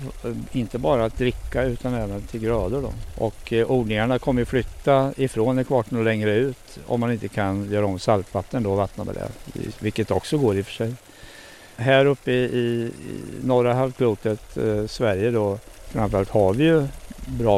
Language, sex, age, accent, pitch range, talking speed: Swedish, male, 60-79, Norwegian, 105-135 Hz, 165 wpm